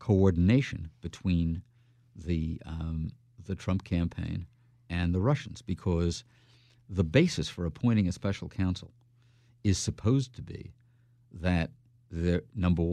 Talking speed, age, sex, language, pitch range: 115 wpm, 50-69, male, English, 85-120 Hz